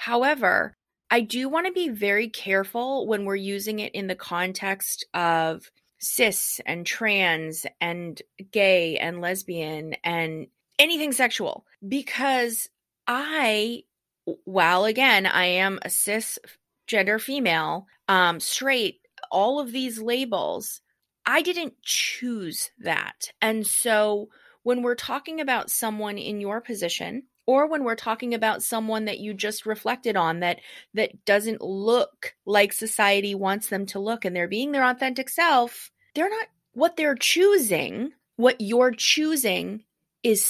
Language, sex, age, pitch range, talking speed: English, female, 30-49, 195-255 Hz, 135 wpm